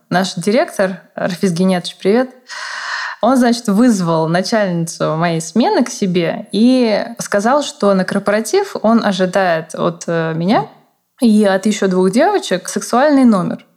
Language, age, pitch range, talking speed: Russian, 20-39, 180-225 Hz, 125 wpm